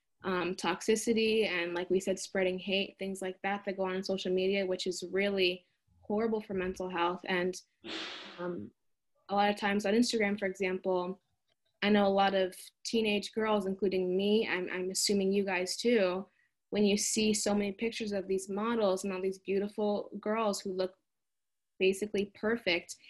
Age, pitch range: 20-39, 185-215 Hz